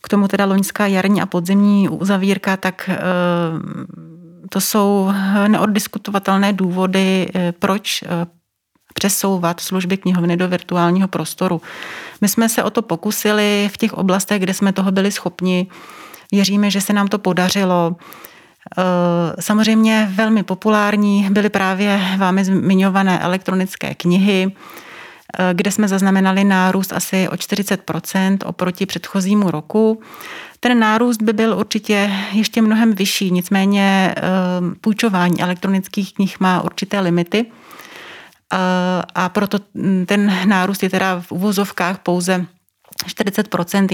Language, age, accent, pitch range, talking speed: Czech, 30-49, native, 180-200 Hz, 115 wpm